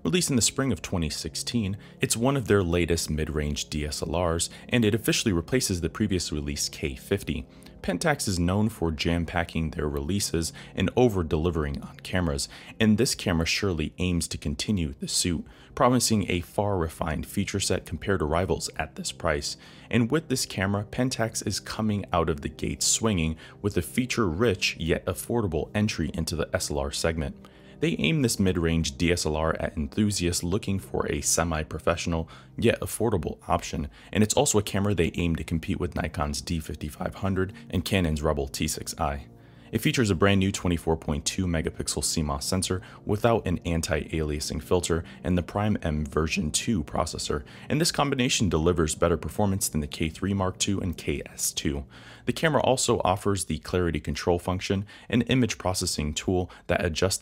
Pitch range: 80-100 Hz